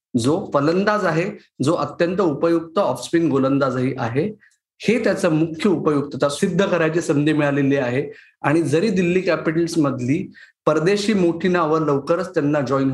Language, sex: Marathi, male